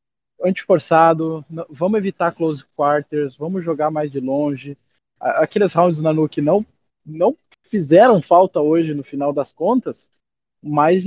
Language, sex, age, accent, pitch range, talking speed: Portuguese, male, 20-39, Brazilian, 155-205 Hz, 140 wpm